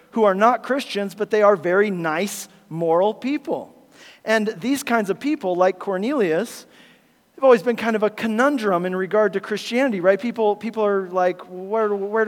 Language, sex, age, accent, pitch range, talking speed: English, male, 40-59, American, 185-230 Hz, 175 wpm